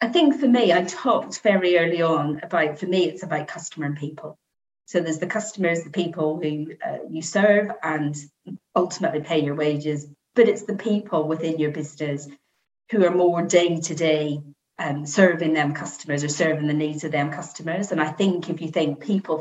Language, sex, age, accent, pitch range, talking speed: English, female, 40-59, British, 155-185 Hz, 185 wpm